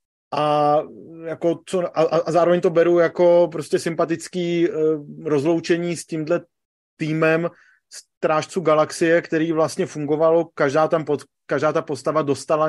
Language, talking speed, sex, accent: Czech, 130 wpm, male, native